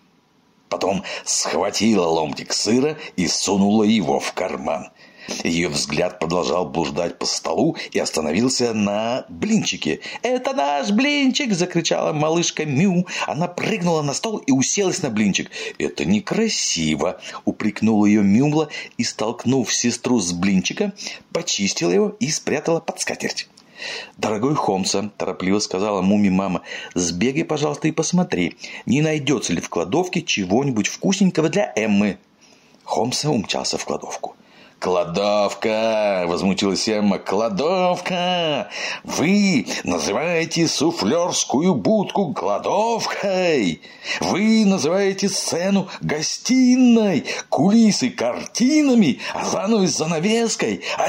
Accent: native